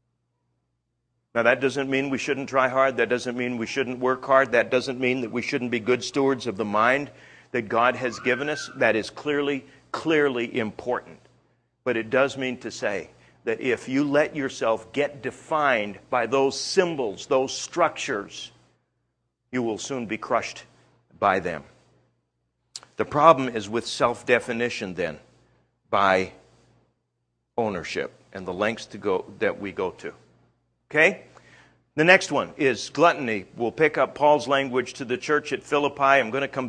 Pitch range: 115-140 Hz